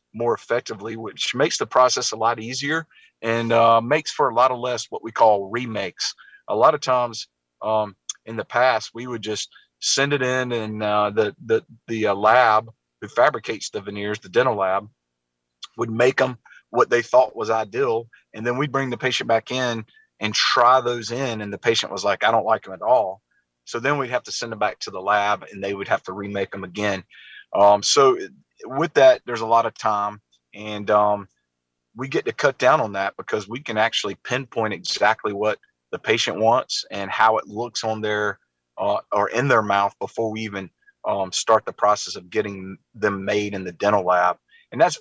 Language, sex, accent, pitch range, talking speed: English, male, American, 100-120 Hz, 210 wpm